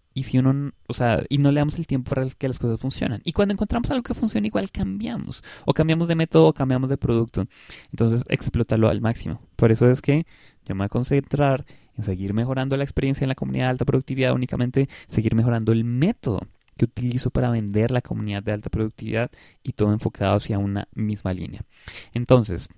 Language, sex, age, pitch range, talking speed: Spanish, male, 20-39, 110-140 Hz, 205 wpm